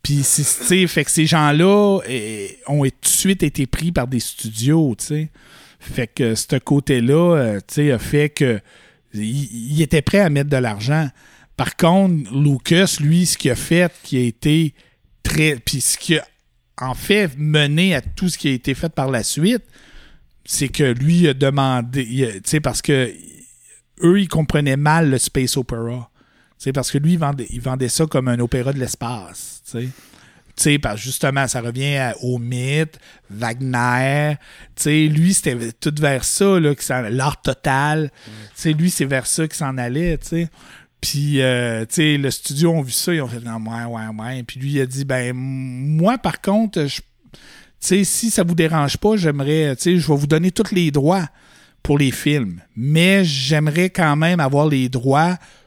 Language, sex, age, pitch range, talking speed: French, male, 60-79, 130-160 Hz, 185 wpm